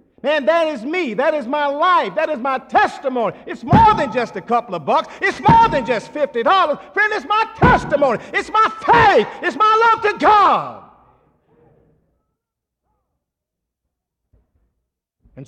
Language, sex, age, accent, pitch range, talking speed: English, male, 50-69, American, 200-295 Hz, 145 wpm